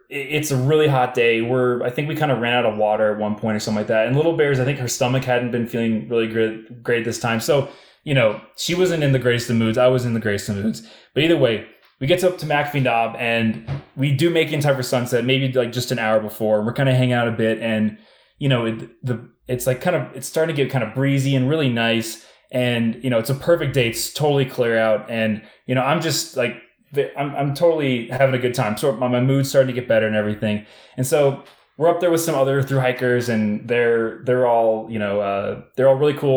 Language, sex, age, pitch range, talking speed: English, male, 20-39, 115-140 Hz, 270 wpm